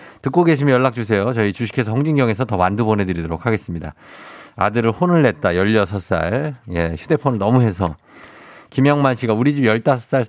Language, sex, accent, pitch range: Korean, male, native, 100-140 Hz